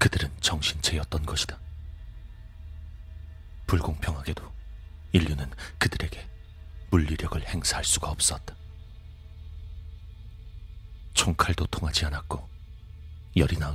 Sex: male